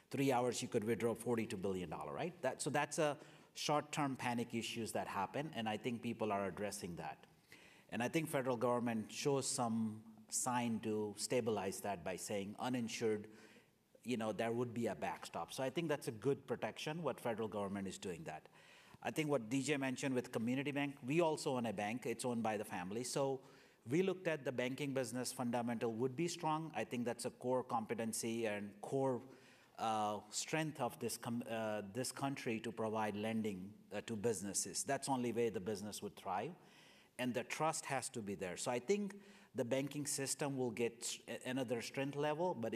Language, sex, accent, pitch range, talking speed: English, male, Indian, 115-140 Hz, 190 wpm